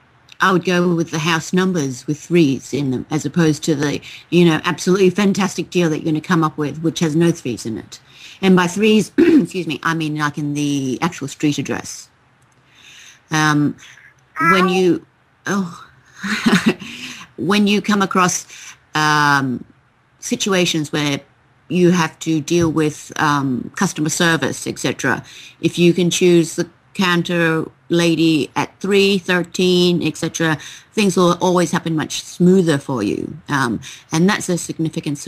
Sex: female